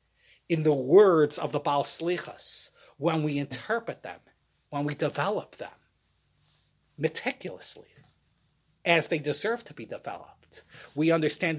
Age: 30-49